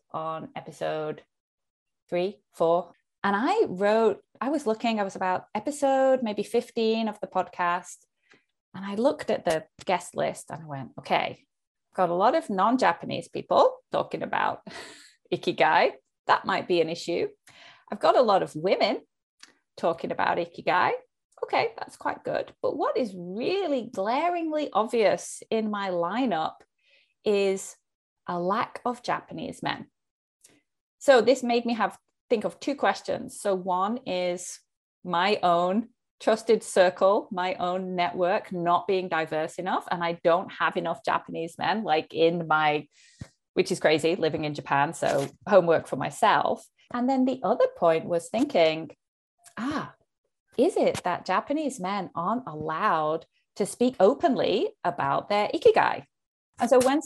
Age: 20-39